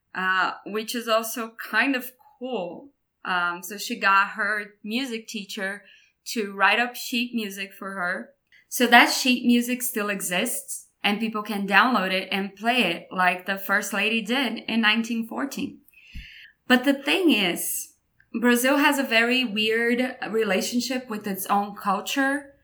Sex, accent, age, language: female, Brazilian, 20-39, English